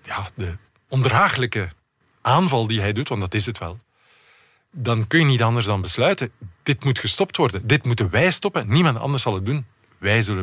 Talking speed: 190 wpm